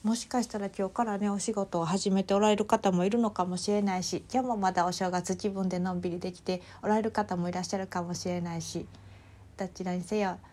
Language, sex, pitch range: Japanese, female, 170-205 Hz